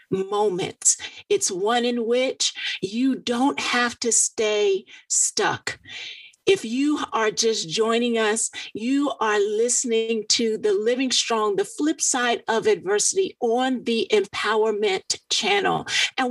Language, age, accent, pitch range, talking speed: English, 50-69, American, 225-335 Hz, 125 wpm